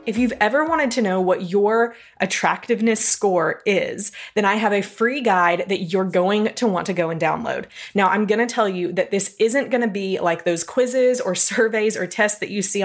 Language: English